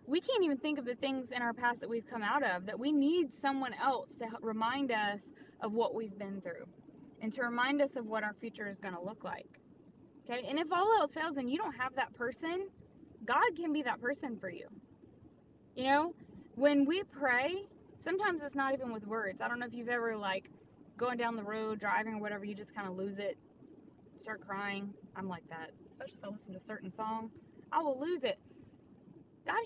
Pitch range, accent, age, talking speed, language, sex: 215-285 Hz, American, 20-39, 220 wpm, English, female